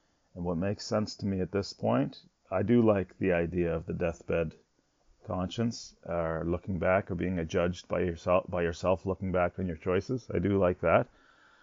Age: 40-59